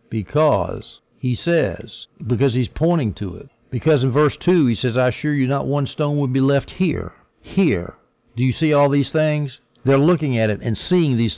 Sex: male